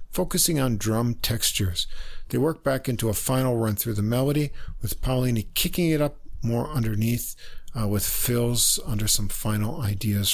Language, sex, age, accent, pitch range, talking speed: English, male, 50-69, American, 110-140 Hz, 165 wpm